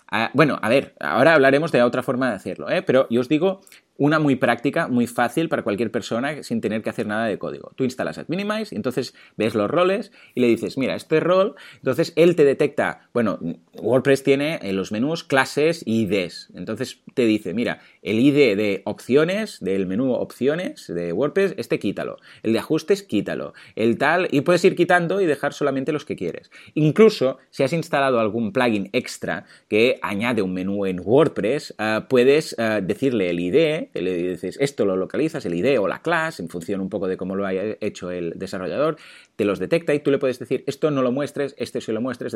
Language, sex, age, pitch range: Spanish, male, 30-49, 110-155 Hz